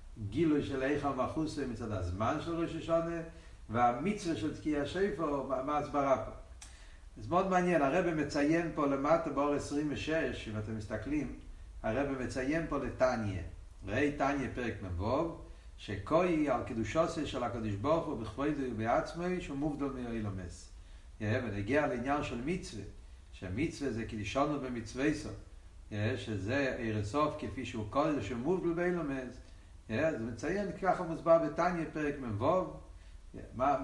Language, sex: Hebrew, male